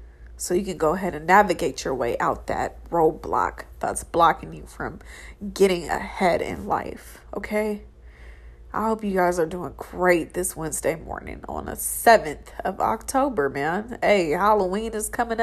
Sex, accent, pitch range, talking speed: female, American, 165-220 Hz, 160 wpm